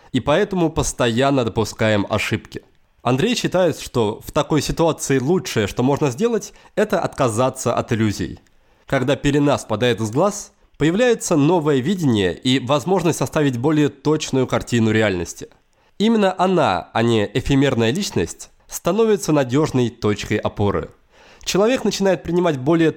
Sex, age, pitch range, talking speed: male, 20-39, 120-170 Hz, 125 wpm